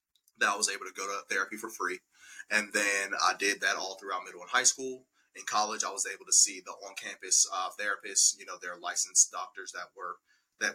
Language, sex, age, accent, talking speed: English, male, 20-39, American, 225 wpm